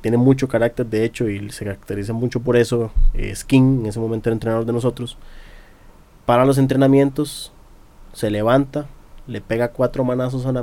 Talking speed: 175 wpm